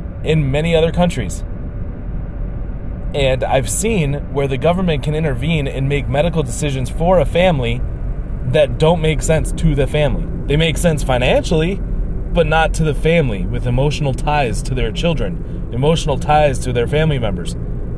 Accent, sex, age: American, male, 30-49